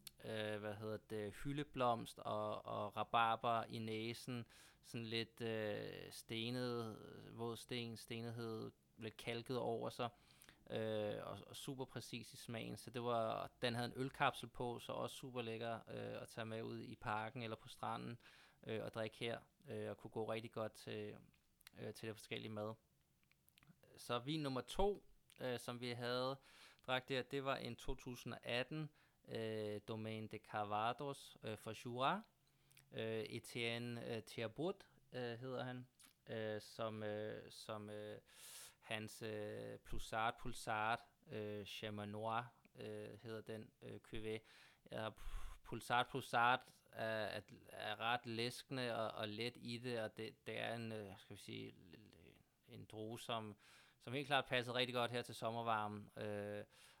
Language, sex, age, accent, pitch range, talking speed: Danish, male, 20-39, native, 110-125 Hz, 150 wpm